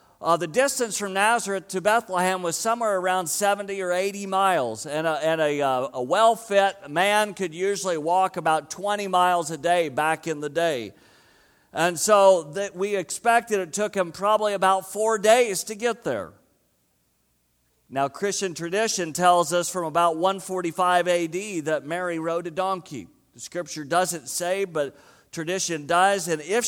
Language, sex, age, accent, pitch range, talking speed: English, male, 50-69, American, 160-200 Hz, 160 wpm